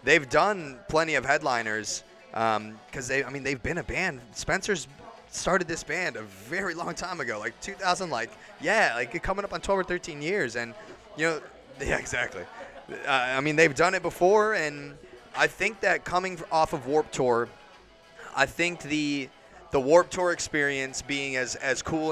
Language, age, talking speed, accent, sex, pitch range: English, 20-39, 175 wpm, American, male, 120-155 Hz